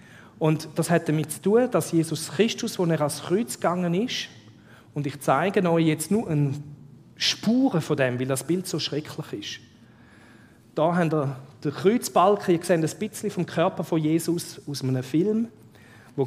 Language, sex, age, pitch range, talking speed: German, male, 40-59, 120-175 Hz, 175 wpm